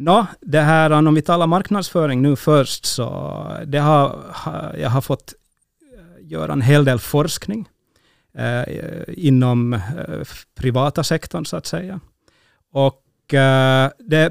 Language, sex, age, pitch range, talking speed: Finnish, male, 30-49, 125-155 Hz, 135 wpm